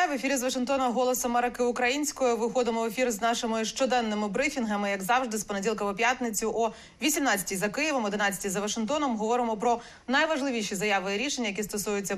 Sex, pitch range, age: female, 200-250 Hz, 30-49